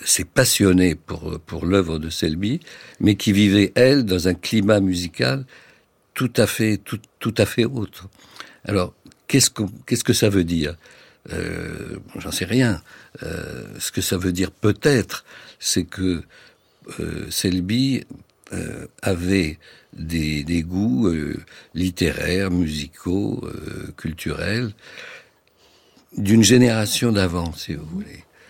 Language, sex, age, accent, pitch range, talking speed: French, male, 60-79, French, 90-110 Hz, 130 wpm